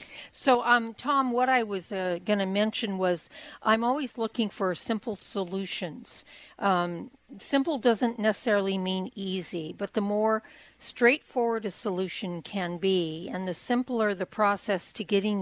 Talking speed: 145 wpm